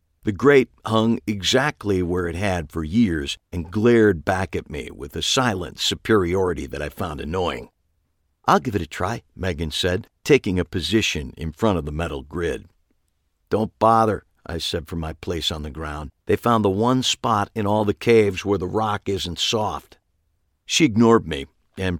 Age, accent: 50-69, American